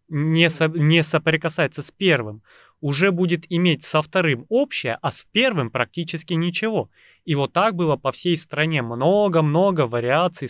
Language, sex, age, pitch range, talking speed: Russian, male, 20-39, 125-165 Hz, 135 wpm